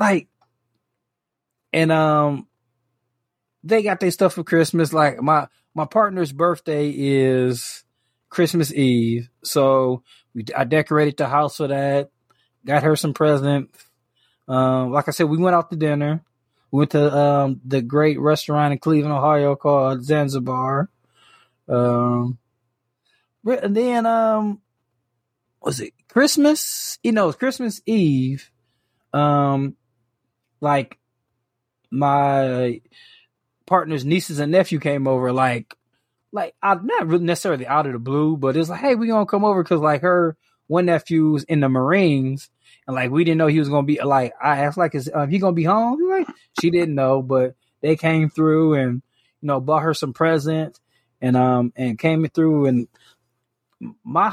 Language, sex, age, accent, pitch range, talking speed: English, male, 20-39, American, 130-165 Hz, 150 wpm